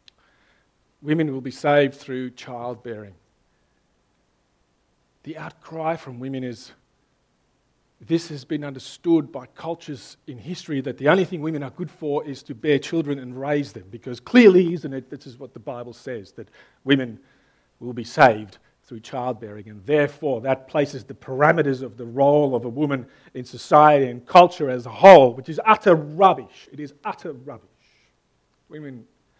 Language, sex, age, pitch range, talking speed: English, male, 50-69, 120-150 Hz, 160 wpm